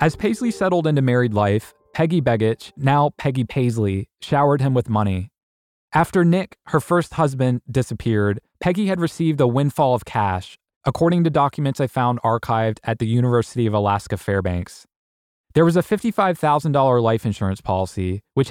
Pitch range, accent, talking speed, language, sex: 105-155 Hz, American, 155 wpm, English, male